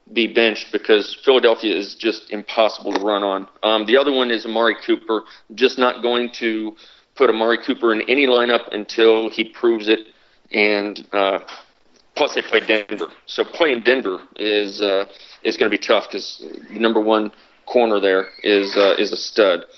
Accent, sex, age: American, male, 40-59